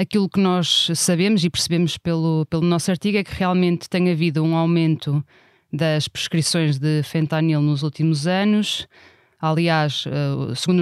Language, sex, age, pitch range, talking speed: Portuguese, female, 20-39, 160-185 Hz, 145 wpm